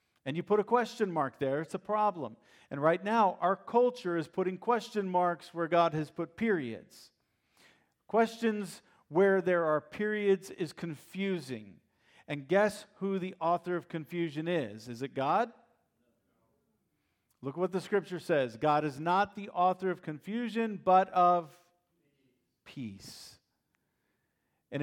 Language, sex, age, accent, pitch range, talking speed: English, male, 50-69, American, 160-215 Hz, 145 wpm